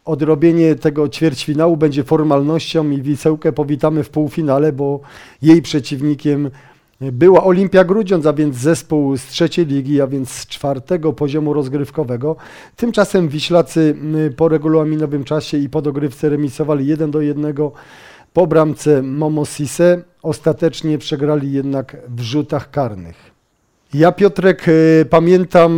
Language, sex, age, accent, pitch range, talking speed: Polish, male, 40-59, native, 150-165 Hz, 120 wpm